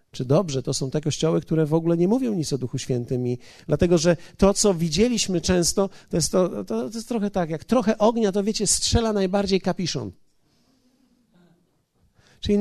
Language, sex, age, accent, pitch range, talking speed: Polish, male, 50-69, native, 150-205 Hz, 185 wpm